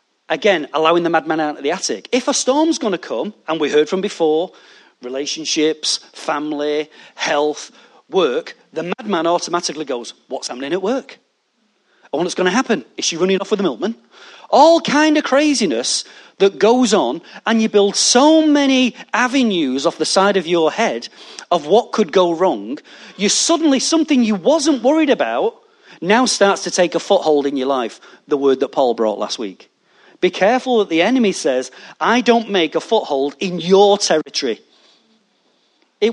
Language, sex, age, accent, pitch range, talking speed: English, male, 40-59, British, 160-250 Hz, 175 wpm